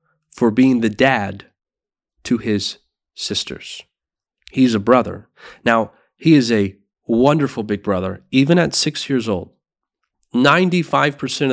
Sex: male